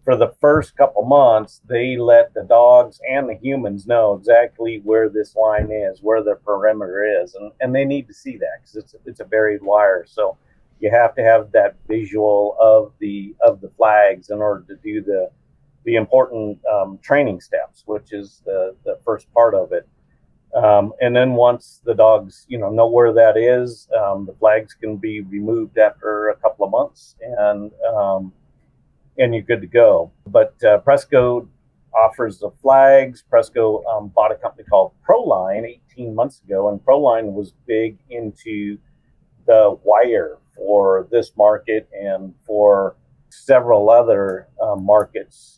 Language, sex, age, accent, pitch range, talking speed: English, male, 50-69, American, 105-125 Hz, 165 wpm